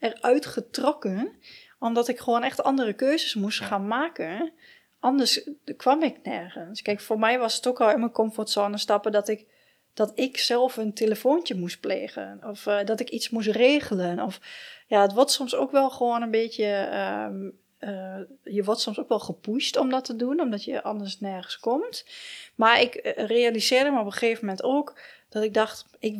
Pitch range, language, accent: 205-260 Hz, Dutch, Dutch